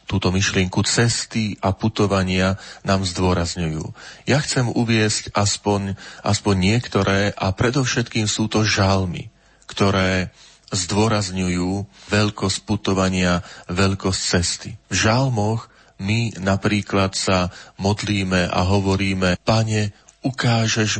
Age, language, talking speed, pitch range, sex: 40-59, Slovak, 95 wpm, 95-115 Hz, male